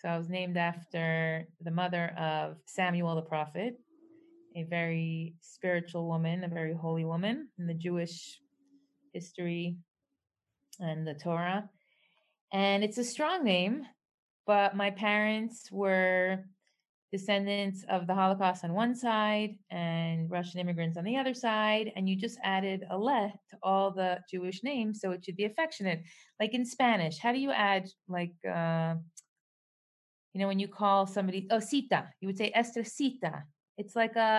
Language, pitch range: English, 175-230 Hz